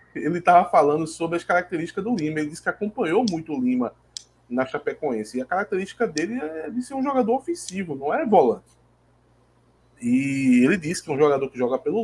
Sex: male